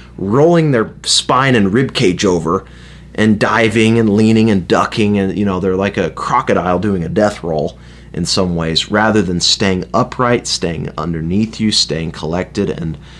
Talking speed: 165 wpm